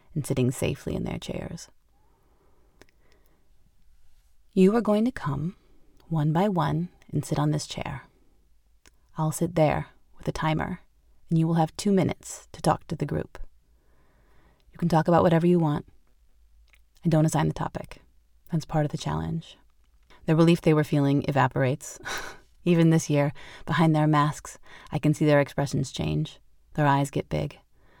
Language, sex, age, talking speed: English, female, 30-49, 160 wpm